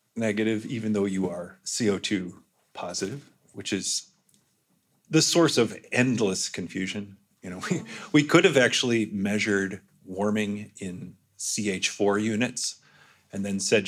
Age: 40-59